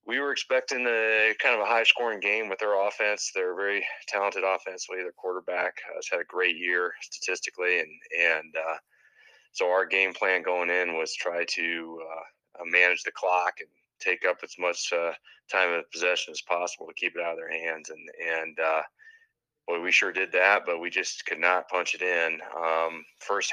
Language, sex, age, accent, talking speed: English, male, 20-39, American, 195 wpm